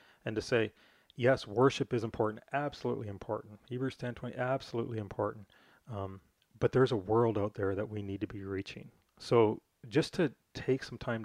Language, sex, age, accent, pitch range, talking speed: English, male, 30-49, American, 105-125 Hz, 175 wpm